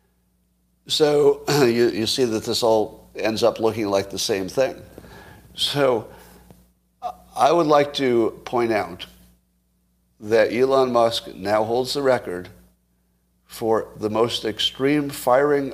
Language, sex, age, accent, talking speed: English, male, 50-69, American, 125 wpm